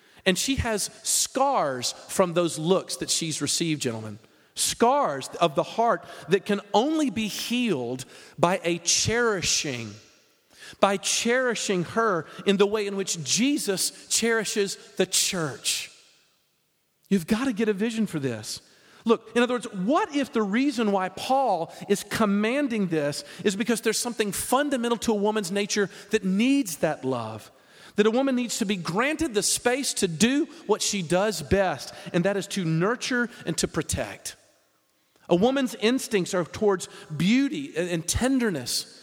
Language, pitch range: English, 170-235 Hz